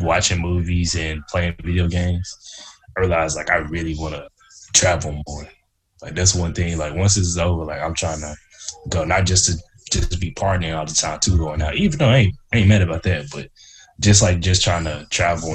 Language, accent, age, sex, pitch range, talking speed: English, American, 20-39, male, 80-110 Hz, 225 wpm